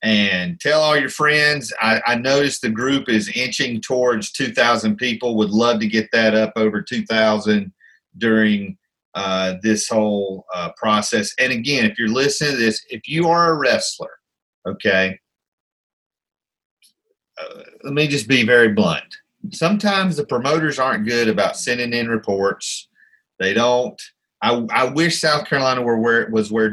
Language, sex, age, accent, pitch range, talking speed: English, male, 40-59, American, 110-150 Hz, 155 wpm